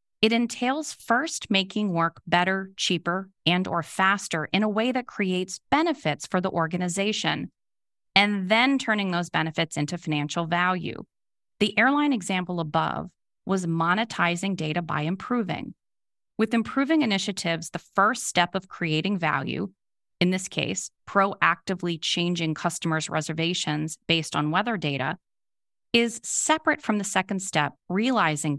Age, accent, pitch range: 30-49, American, 165-210 Hz